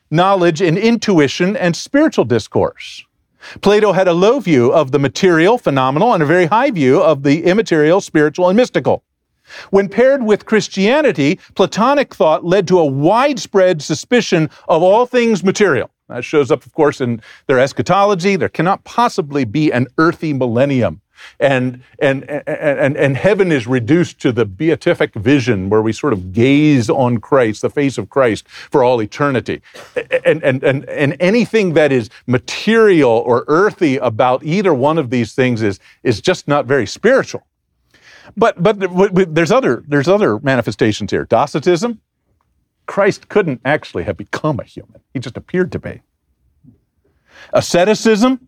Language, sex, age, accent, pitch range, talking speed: English, male, 50-69, American, 135-200 Hz, 155 wpm